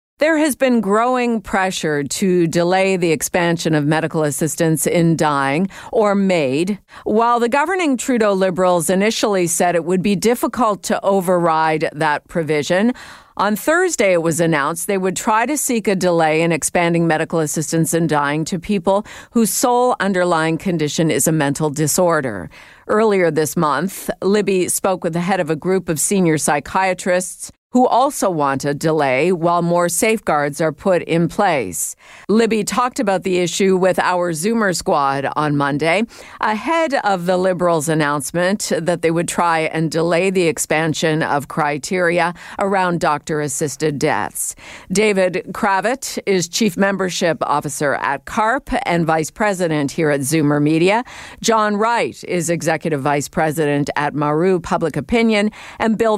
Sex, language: female, English